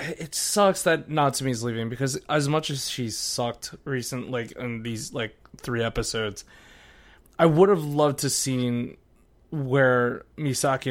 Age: 20-39